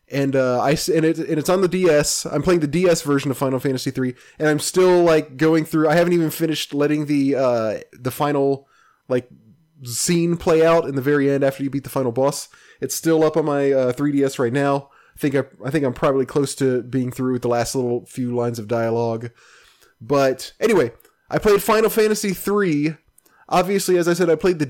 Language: English